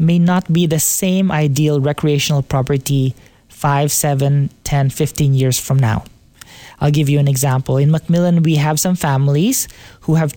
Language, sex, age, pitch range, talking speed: English, male, 20-39, 145-180 Hz, 160 wpm